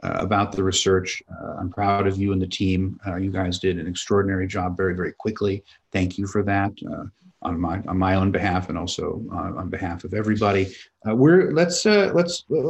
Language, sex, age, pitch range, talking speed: English, male, 50-69, 100-135 Hz, 210 wpm